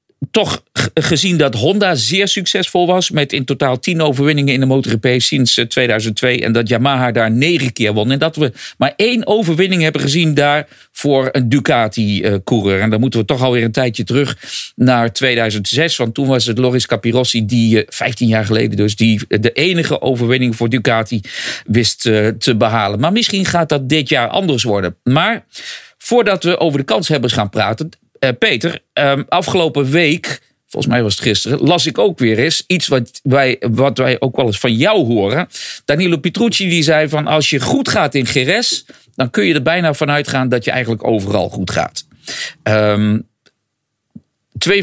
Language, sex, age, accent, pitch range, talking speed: English, male, 50-69, Dutch, 115-160 Hz, 180 wpm